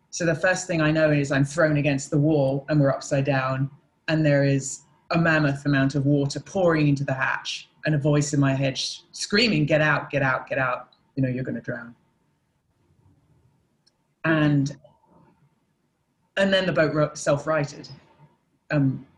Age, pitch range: 30-49, 140-165 Hz